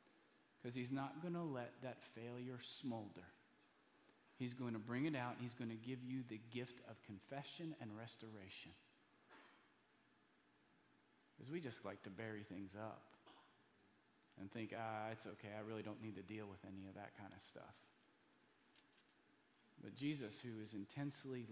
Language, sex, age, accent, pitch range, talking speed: English, male, 40-59, American, 115-155 Hz, 160 wpm